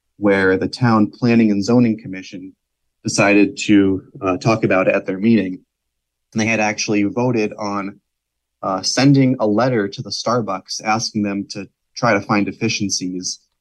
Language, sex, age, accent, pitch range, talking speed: English, male, 30-49, American, 95-115 Hz, 155 wpm